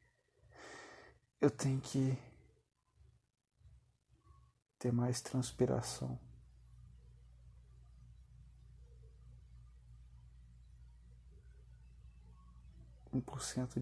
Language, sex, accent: Portuguese, male, Brazilian